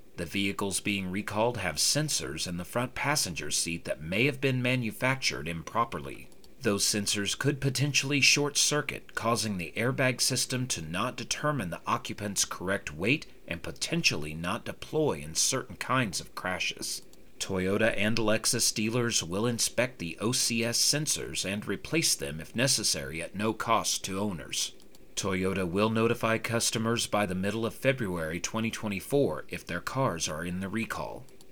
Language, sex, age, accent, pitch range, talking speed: English, male, 40-59, American, 100-125 Hz, 150 wpm